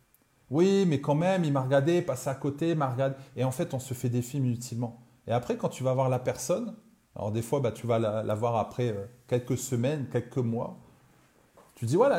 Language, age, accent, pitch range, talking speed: French, 30-49, French, 120-145 Hz, 260 wpm